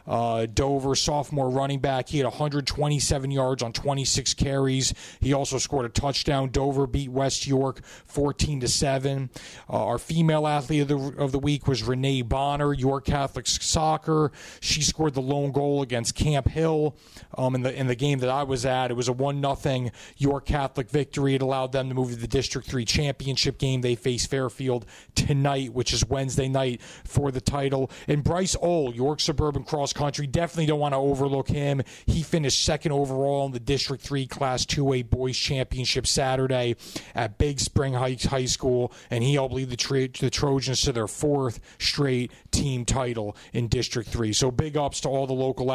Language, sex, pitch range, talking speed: English, male, 125-140 Hz, 180 wpm